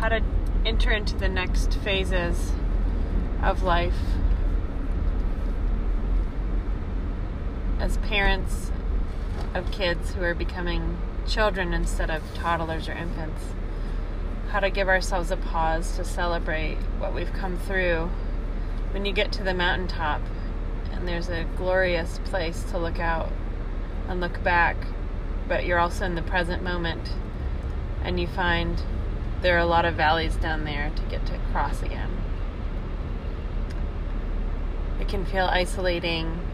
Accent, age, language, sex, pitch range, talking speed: American, 30-49, English, female, 80-100 Hz, 130 wpm